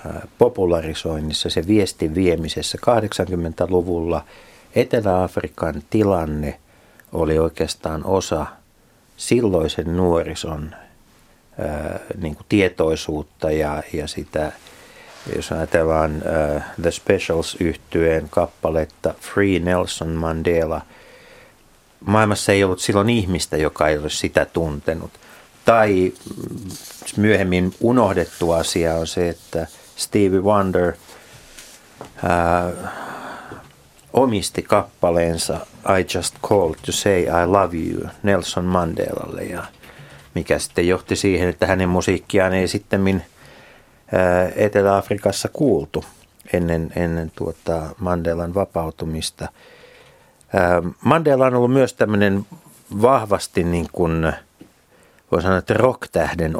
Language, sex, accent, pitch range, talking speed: Finnish, male, native, 80-95 Hz, 95 wpm